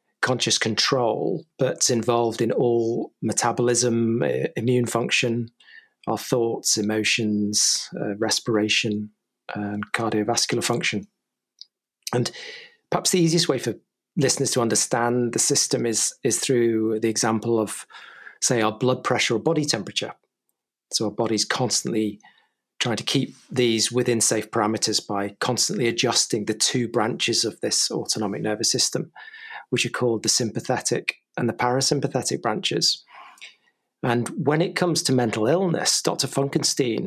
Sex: male